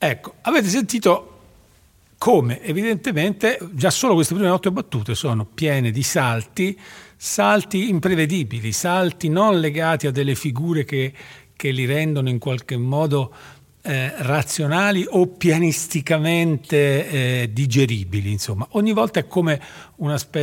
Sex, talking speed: male, 125 wpm